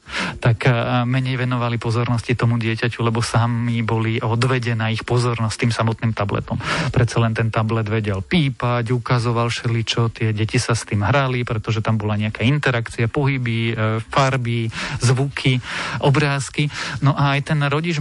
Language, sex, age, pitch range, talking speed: Slovak, male, 40-59, 115-135 Hz, 145 wpm